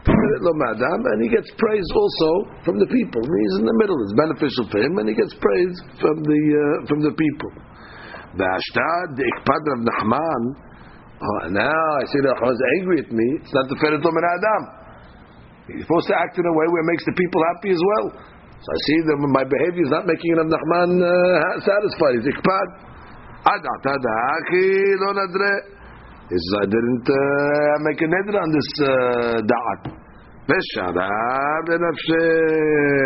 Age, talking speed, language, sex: 50-69, 145 wpm, English, male